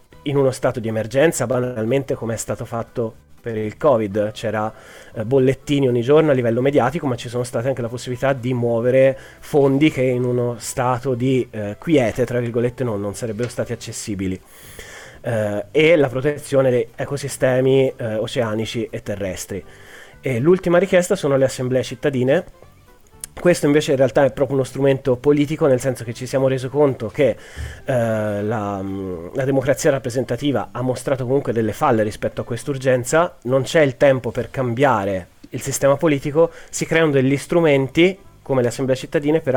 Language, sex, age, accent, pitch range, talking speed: Italian, male, 30-49, native, 115-140 Hz, 165 wpm